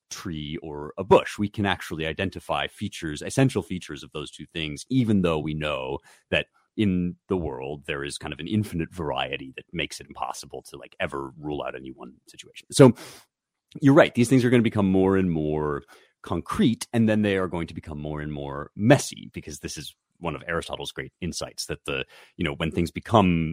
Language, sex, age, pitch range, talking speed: English, male, 30-49, 75-105 Hz, 205 wpm